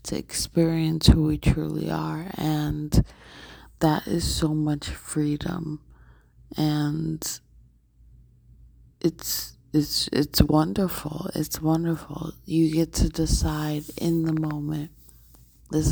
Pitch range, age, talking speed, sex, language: 150-170 Hz, 20-39, 100 wpm, female, English